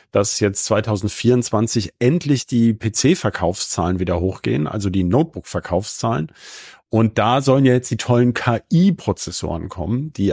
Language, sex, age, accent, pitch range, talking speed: German, male, 40-59, German, 110-140 Hz, 120 wpm